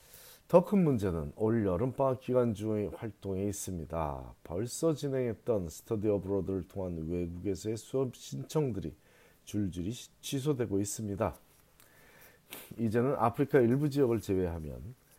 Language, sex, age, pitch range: Korean, male, 40-59, 95-120 Hz